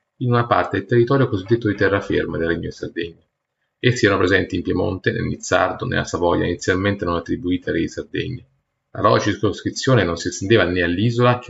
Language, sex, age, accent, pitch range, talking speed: Italian, male, 30-49, native, 95-120 Hz, 195 wpm